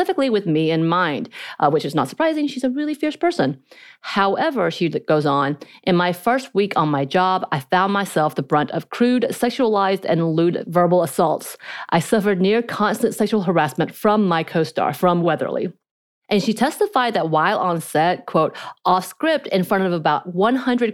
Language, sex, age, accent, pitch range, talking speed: English, female, 30-49, American, 165-220 Hz, 185 wpm